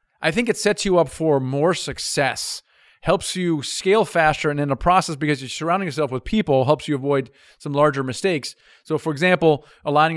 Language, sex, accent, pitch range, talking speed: English, male, American, 140-175 Hz, 195 wpm